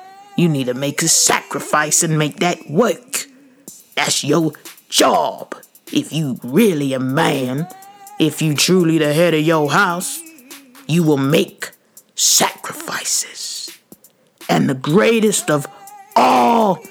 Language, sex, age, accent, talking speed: English, male, 50-69, American, 125 wpm